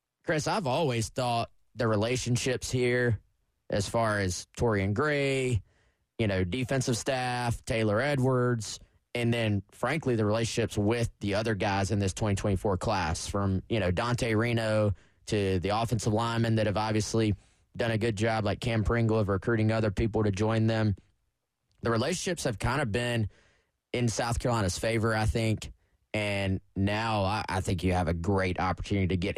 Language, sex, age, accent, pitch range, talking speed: English, male, 20-39, American, 100-120 Hz, 170 wpm